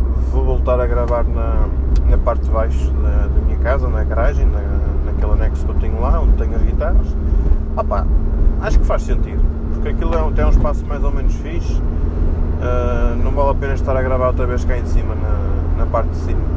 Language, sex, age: Portuguese, male, 20-39